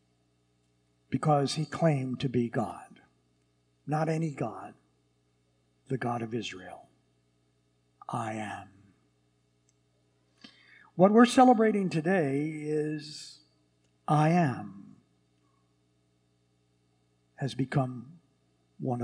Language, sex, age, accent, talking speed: English, male, 60-79, American, 80 wpm